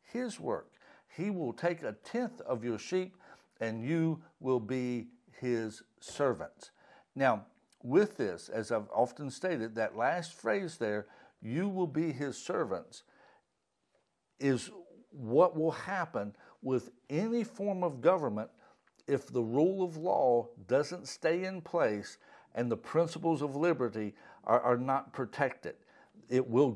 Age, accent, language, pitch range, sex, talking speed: 60-79, American, English, 120-175 Hz, male, 135 wpm